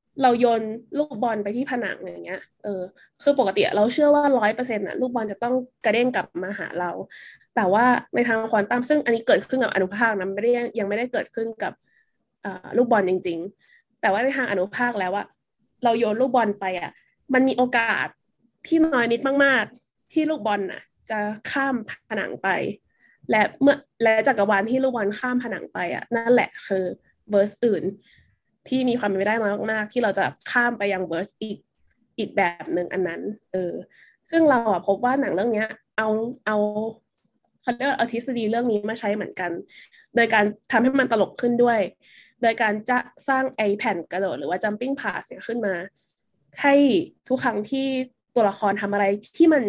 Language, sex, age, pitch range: Thai, female, 20-39, 205-255 Hz